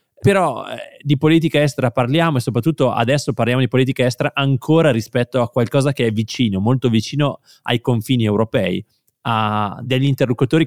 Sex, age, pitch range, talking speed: male, 20-39, 105-130 Hz, 155 wpm